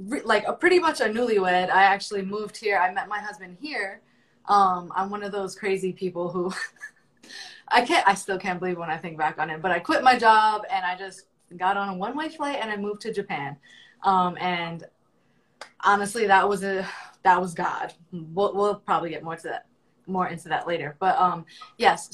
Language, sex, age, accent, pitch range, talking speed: English, female, 20-39, American, 180-215 Hz, 205 wpm